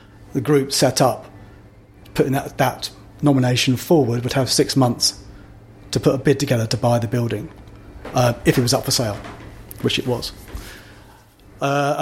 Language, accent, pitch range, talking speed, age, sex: English, British, 110-135 Hz, 165 wpm, 30-49, male